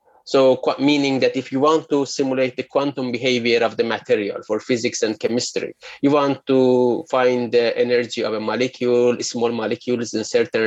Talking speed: 175 wpm